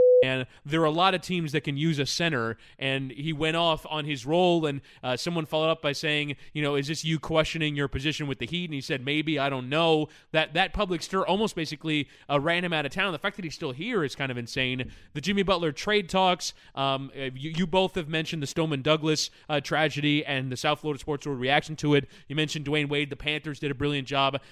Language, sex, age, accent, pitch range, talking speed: English, male, 20-39, American, 140-165 Hz, 245 wpm